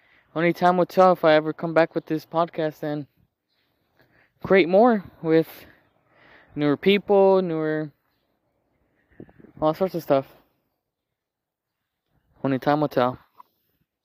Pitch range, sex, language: 130-170 Hz, male, English